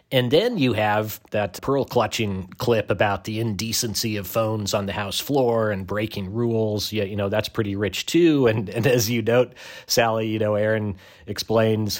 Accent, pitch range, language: American, 105-130 Hz, English